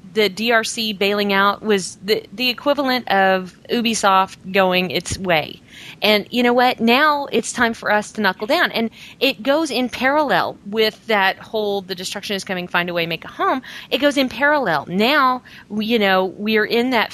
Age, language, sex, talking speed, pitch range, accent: 40-59, English, female, 185 wpm, 185-230 Hz, American